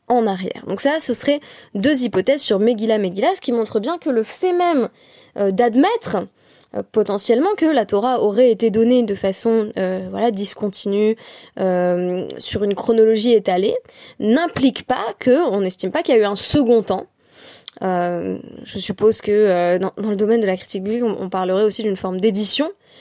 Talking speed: 185 wpm